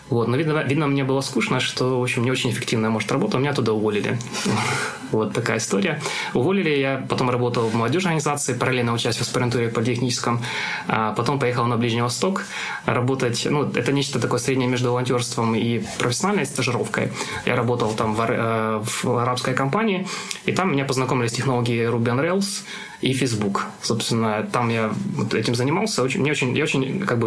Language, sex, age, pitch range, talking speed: Russian, male, 20-39, 120-135 Hz, 170 wpm